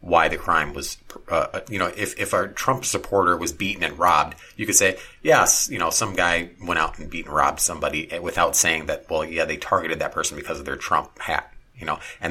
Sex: male